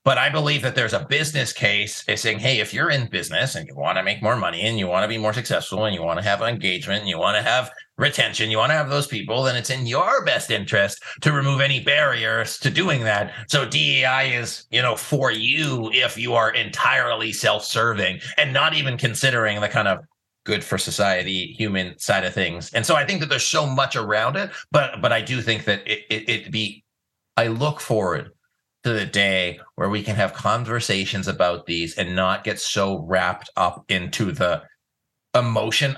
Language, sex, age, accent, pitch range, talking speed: English, male, 30-49, American, 105-135 Hz, 215 wpm